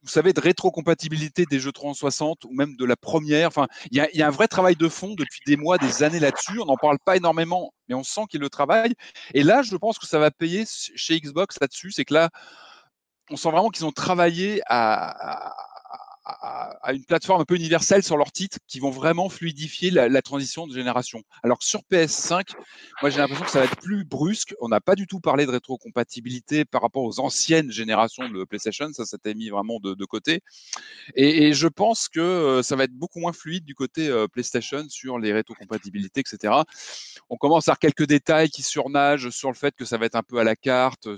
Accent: French